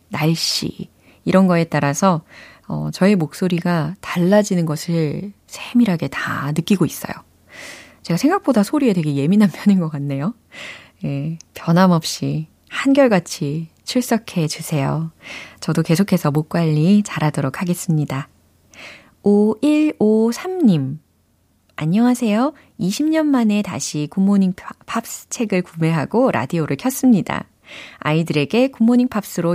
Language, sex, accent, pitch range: Korean, female, native, 155-225 Hz